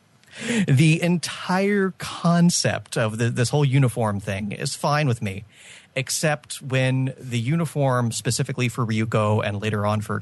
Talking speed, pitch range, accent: 135 wpm, 110-155 Hz, American